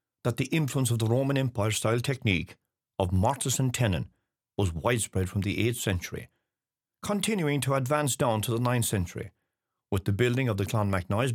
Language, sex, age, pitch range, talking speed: English, male, 60-79, 100-130 Hz, 170 wpm